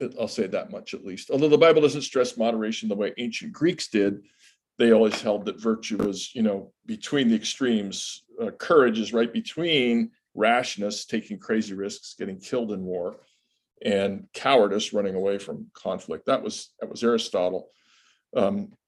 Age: 50-69